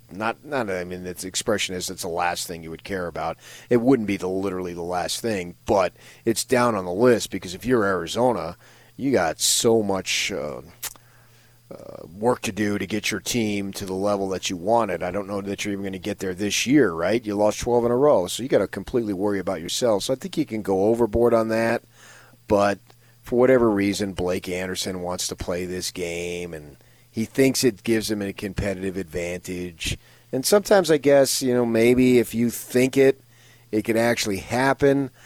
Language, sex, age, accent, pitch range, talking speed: English, male, 40-59, American, 95-120 Hz, 205 wpm